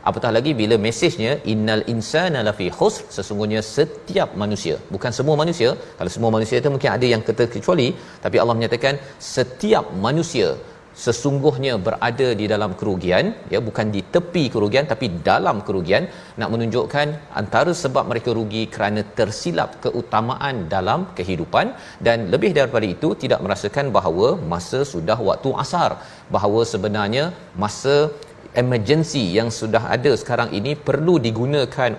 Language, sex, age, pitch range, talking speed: Malayalam, male, 40-59, 110-140 Hz, 135 wpm